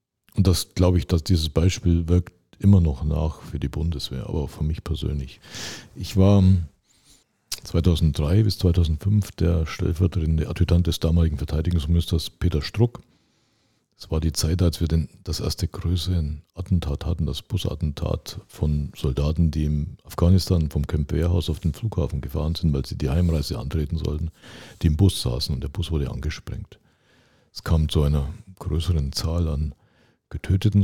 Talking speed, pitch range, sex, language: 155 wpm, 75-95 Hz, male, German